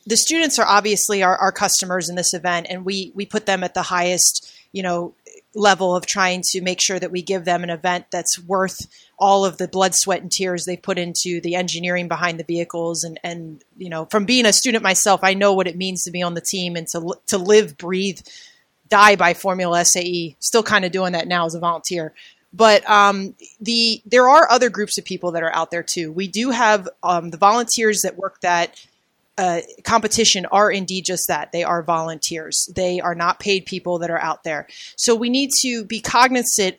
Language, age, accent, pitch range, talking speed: English, 30-49, American, 175-210 Hz, 215 wpm